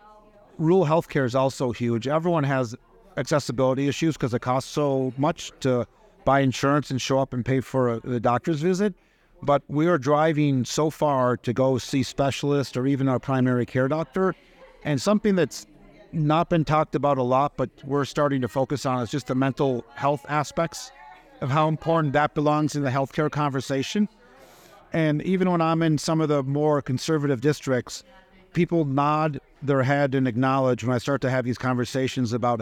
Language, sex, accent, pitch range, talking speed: English, male, American, 130-155 Hz, 180 wpm